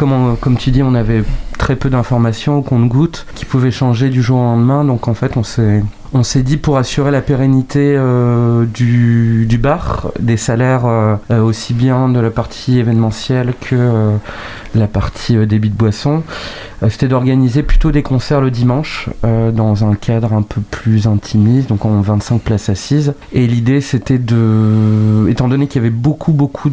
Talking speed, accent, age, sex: 185 wpm, French, 30-49, male